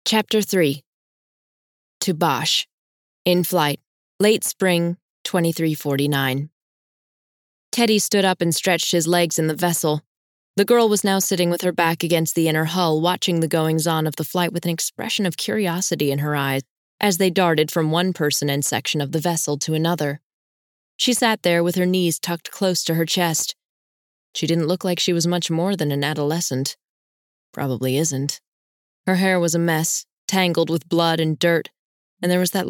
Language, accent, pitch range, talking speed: English, American, 145-180 Hz, 180 wpm